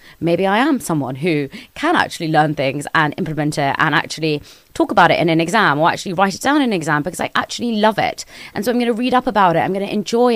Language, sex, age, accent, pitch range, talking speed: English, female, 20-39, British, 160-210 Hz, 265 wpm